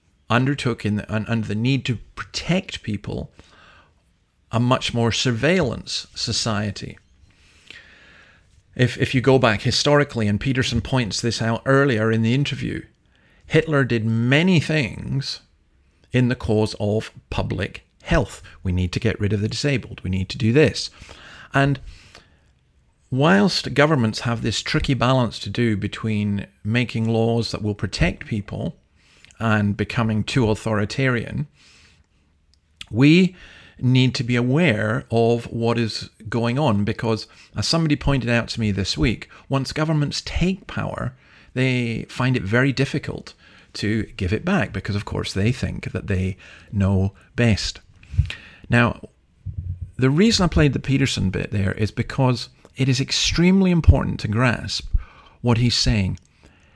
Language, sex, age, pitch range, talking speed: English, male, 50-69, 100-130 Hz, 140 wpm